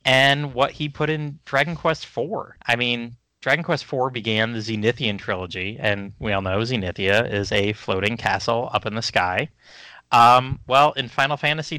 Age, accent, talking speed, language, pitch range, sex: 30-49, American, 180 wpm, English, 105-145 Hz, male